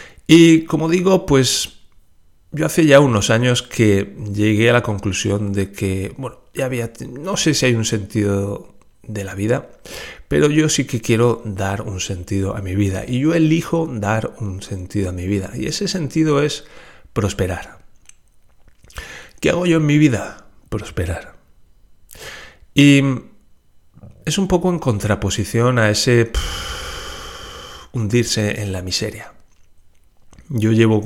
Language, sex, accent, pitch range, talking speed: Spanish, male, Spanish, 100-125 Hz, 145 wpm